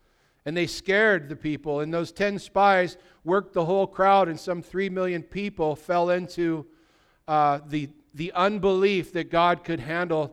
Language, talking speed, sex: English, 165 wpm, male